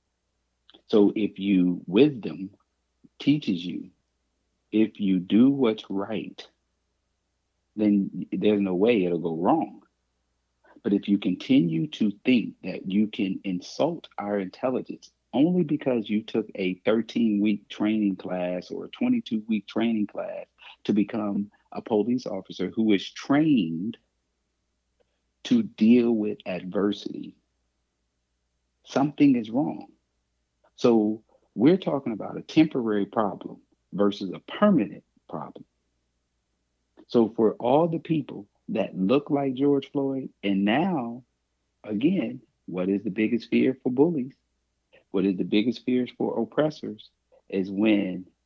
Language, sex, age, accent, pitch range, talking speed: English, male, 50-69, American, 80-115 Hz, 120 wpm